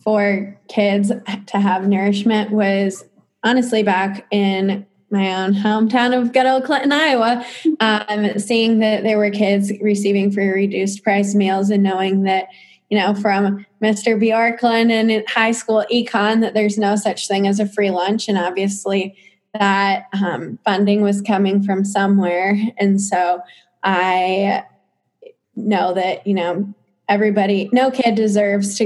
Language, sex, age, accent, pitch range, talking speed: English, female, 20-39, American, 195-215 Hz, 145 wpm